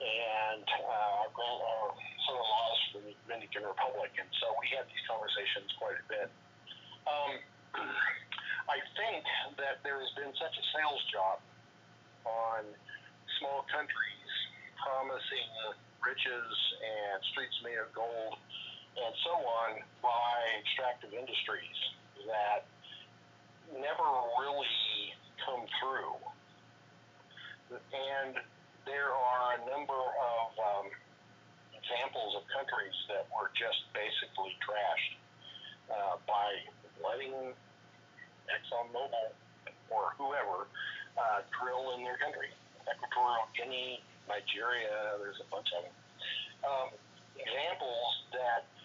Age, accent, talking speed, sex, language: 50-69, American, 105 wpm, male, English